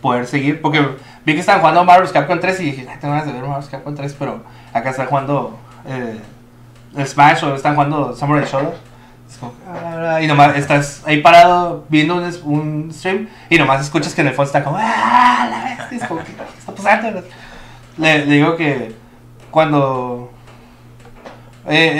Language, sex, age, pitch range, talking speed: Spanish, male, 20-39, 120-155 Hz, 165 wpm